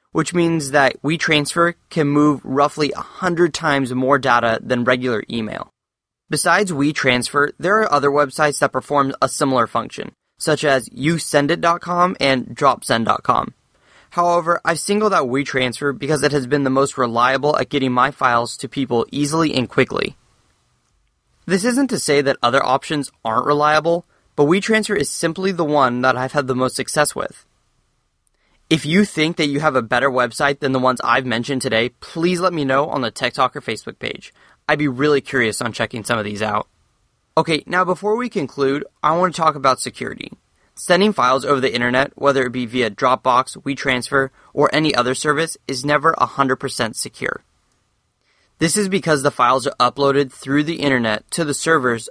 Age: 20-39